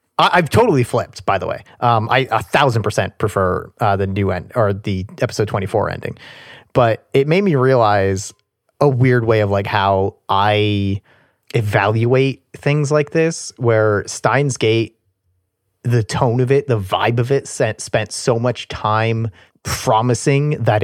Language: English